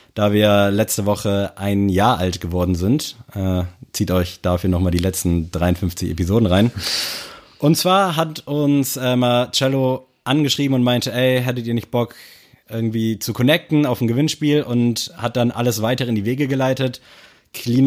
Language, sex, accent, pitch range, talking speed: German, male, German, 105-130 Hz, 165 wpm